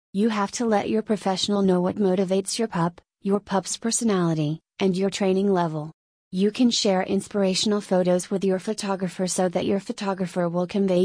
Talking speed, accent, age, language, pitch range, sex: 175 wpm, American, 30-49, English, 180-205 Hz, female